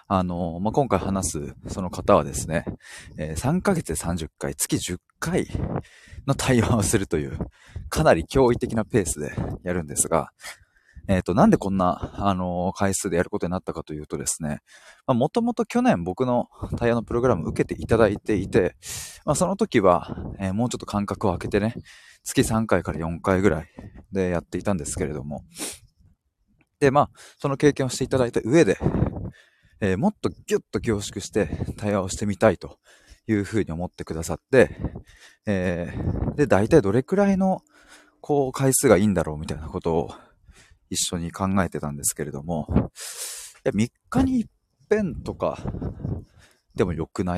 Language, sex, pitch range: Japanese, male, 85-120 Hz